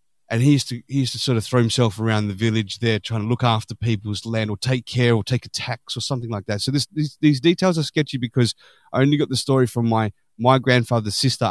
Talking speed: 260 wpm